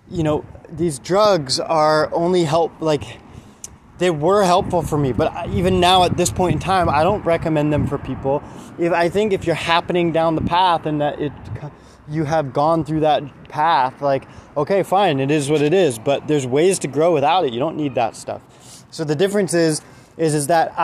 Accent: American